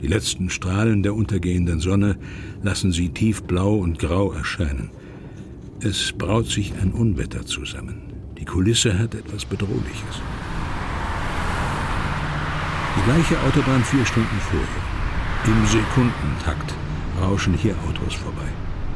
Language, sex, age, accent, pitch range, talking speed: German, male, 60-79, German, 85-110 Hz, 115 wpm